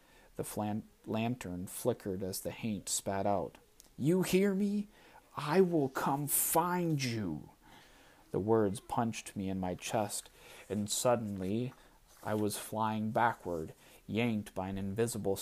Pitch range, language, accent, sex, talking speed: 95-115 Hz, English, American, male, 130 wpm